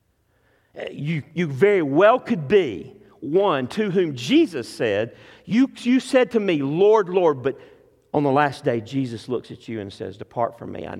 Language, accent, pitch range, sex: English, American, 115-185 Hz, male